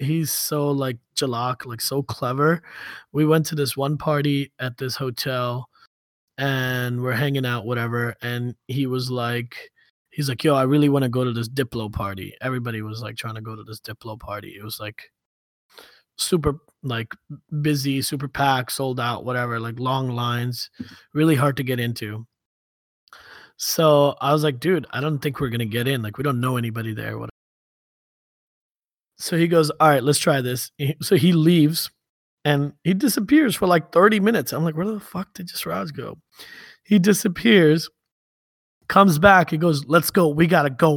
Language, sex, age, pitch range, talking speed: English, male, 20-39, 120-160 Hz, 180 wpm